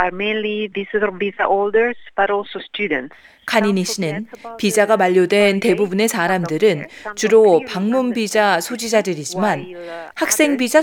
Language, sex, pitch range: Korean, female, 185-240 Hz